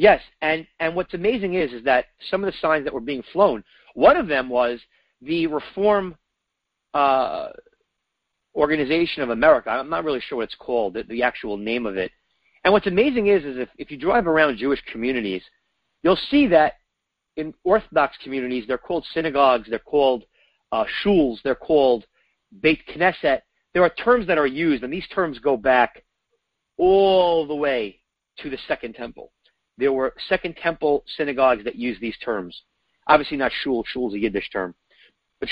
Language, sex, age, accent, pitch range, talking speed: English, male, 40-59, American, 130-185 Hz, 175 wpm